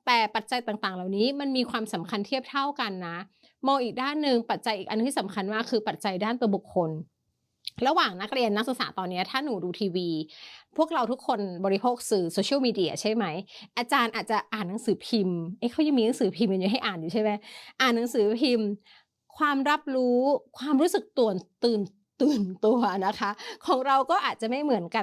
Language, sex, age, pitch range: Thai, female, 30-49, 200-265 Hz